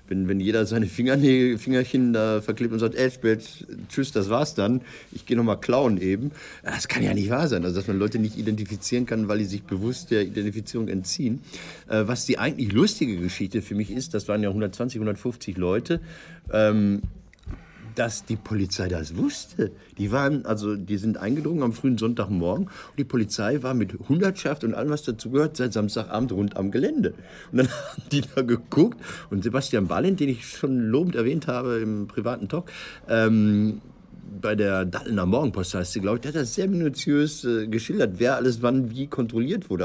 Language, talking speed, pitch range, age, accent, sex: German, 190 wpm, 105-130 Hz, 50-69, German, male